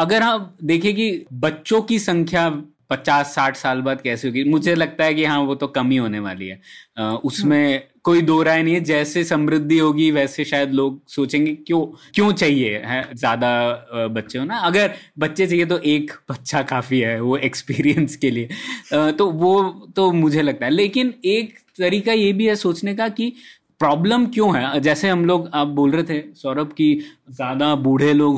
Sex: male